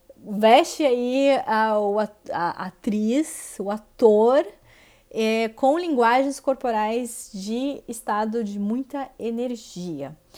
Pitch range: 195-235 Hz